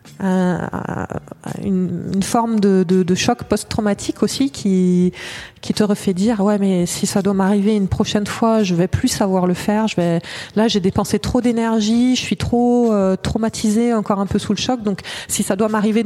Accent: French